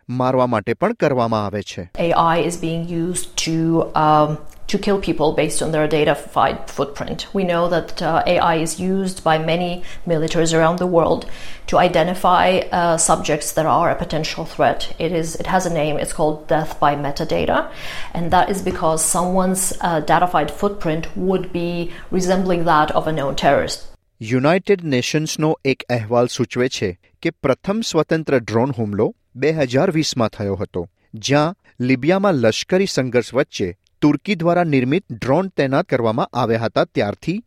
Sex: female